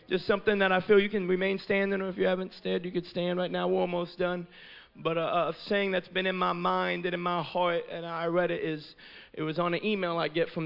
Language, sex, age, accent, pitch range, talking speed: English, male, 30-49, American, 160-220 Hz, 270 wpm